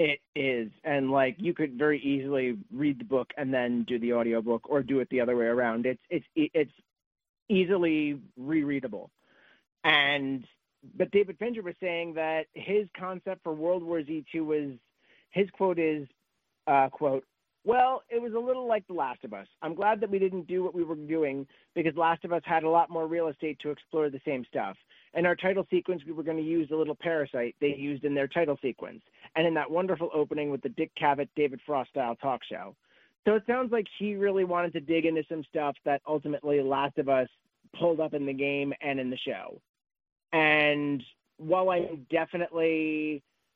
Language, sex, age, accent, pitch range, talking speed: English, male, 40-59, American, 140-170 Hz, 200 wpm